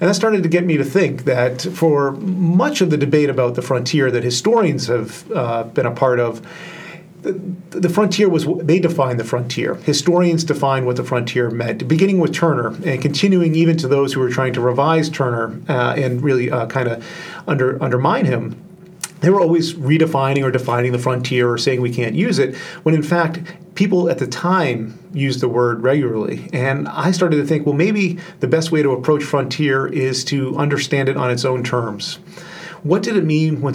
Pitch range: 130-170 Hz